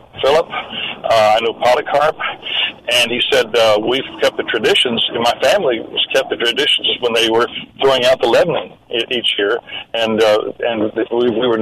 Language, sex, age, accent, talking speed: English, male, 60-79, American, 175 wpm